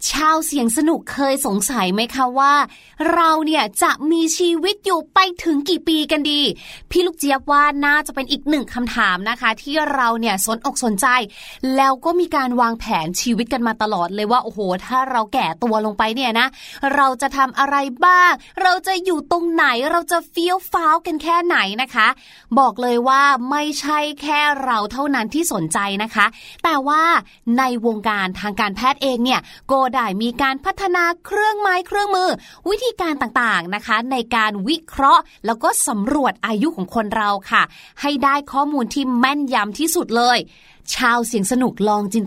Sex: female